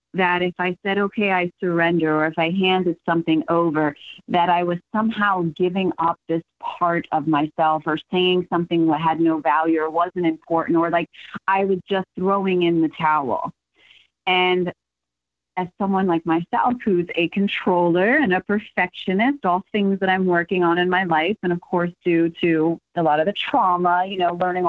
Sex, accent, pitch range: female, American, 160-195 Hz